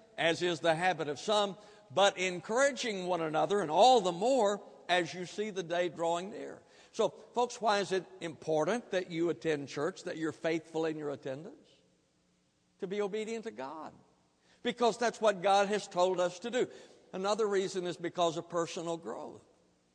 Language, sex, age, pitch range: English, male, 60-79, 150-190 Hz